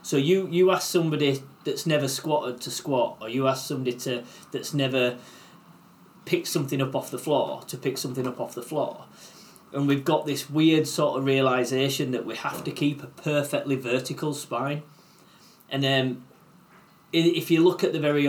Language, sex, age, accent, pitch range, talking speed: English, male, 30-49, British, 135-175 Hz, 180 wpm